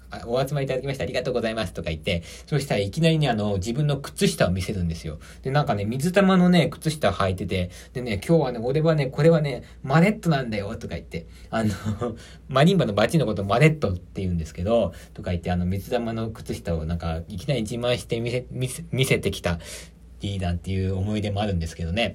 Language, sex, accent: Japanese, male, native